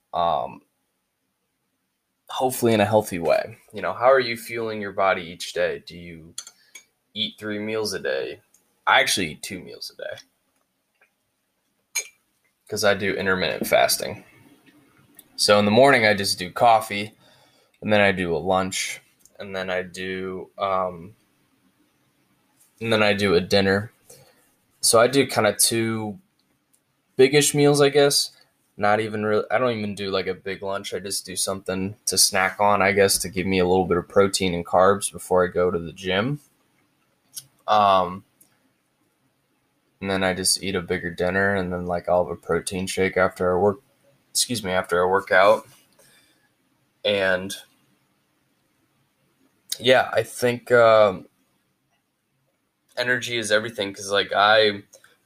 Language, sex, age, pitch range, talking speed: English, male, 10-29, 95-115 Hz, 155 wpm